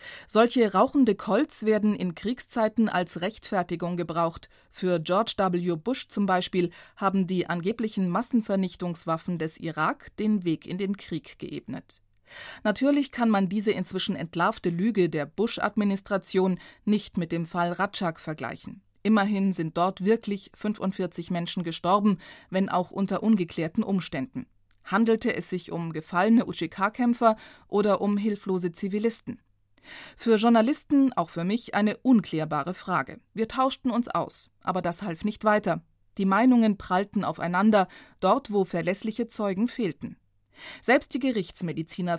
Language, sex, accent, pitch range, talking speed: German, female, German, 175-220 Hz, 135 wpm